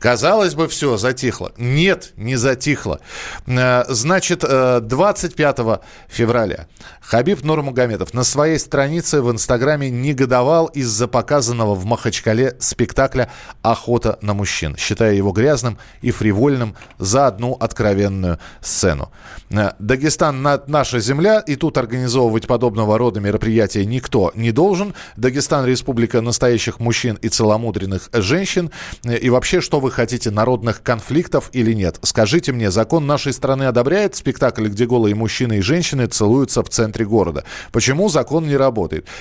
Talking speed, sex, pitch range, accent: 125 wpm, male, 115-155 Hz, native